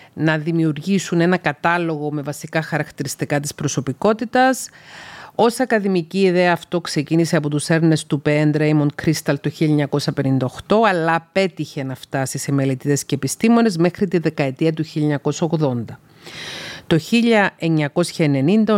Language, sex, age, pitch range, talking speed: Greek, female, 40-59, 150-180 Hz, 120 wpm